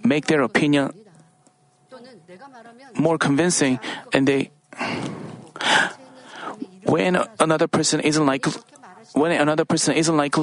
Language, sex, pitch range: Korean, male, 145-205 Hz